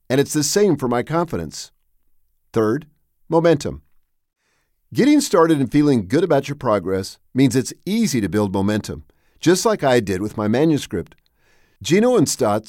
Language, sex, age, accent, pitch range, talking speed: English, male, 50-69, American, 105-165 Hz, 155 wpm